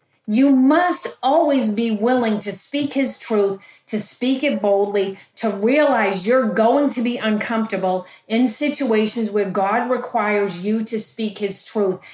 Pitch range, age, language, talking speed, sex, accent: 205-260 Hz, 40-59, English, 150 wpm, female, American